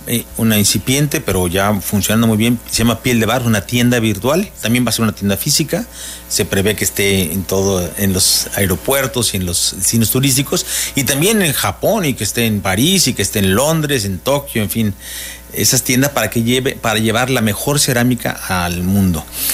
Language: Spanish